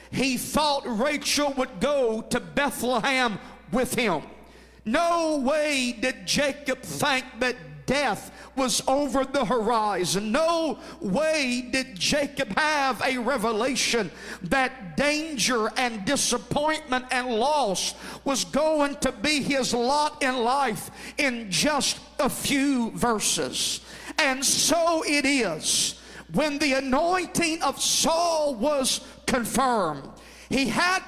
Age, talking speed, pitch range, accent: 50-69, 115 wpm, 245-300 Hz, American